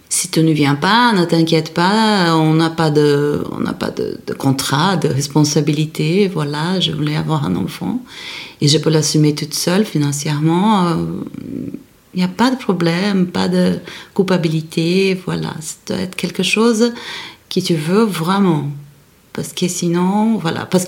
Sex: female